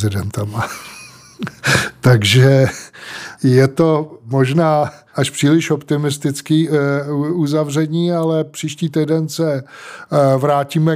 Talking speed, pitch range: 65 wpm, 130-140 Hz